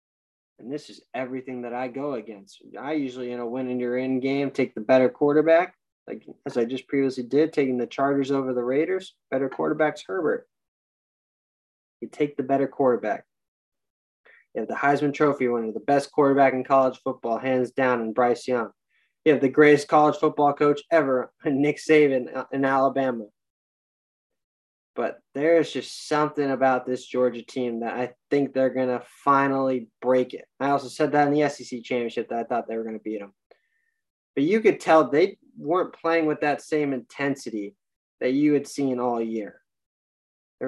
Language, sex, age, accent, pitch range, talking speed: English, male, 20-39, American, 125-150 Hz, 180 wpm